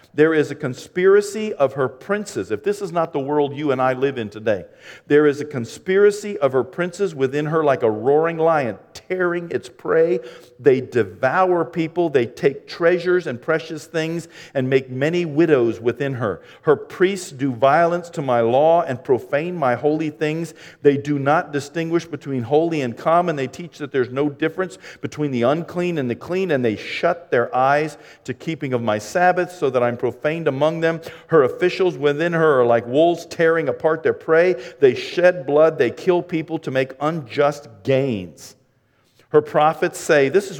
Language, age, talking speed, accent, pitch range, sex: English, 50-69, 185 wpm, American, 130-170 Hz, male